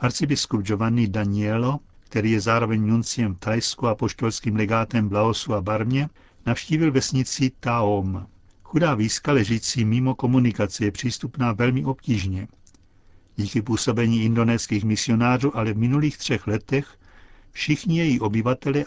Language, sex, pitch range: Czech, male, 105-130 Hz